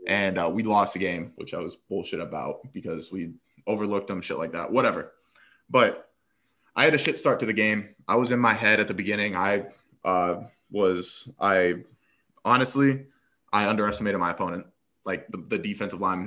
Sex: male